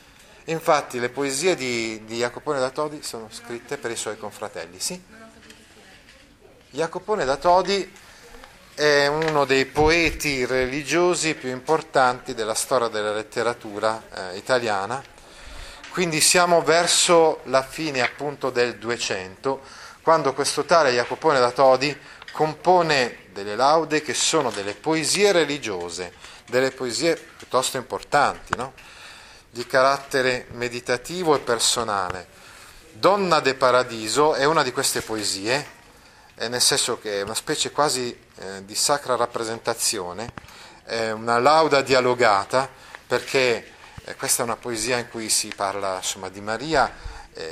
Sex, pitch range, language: male, 115-155 Hz, Italian